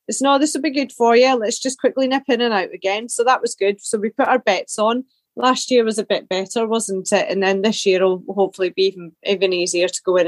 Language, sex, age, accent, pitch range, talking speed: English, female, 30-49, British, 200-245 Hz, 270 wpm